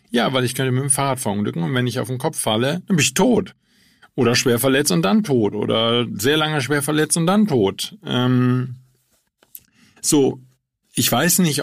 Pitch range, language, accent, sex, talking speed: 105-130 Hz, German, German, male, 195 wpm